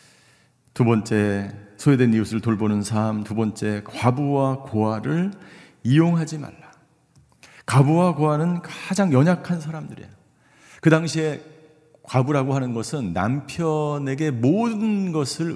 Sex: male